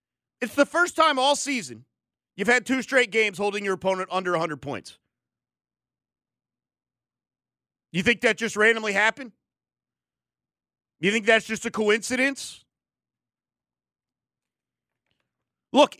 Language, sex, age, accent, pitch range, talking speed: English, male, 40-59, American, 200-260 Hz, 115 wpm